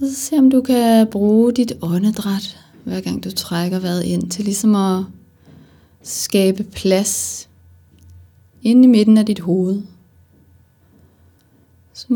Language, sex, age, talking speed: Danish, female, 30-49, 135 wpm